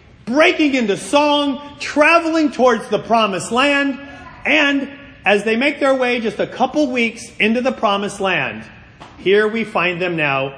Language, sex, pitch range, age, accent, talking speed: English, male, 165-230 Hz, 40-59, American, 155 wpm